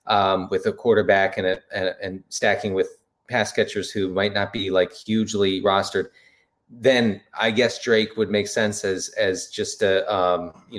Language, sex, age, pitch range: English, male, 30-49, 100-150 Hz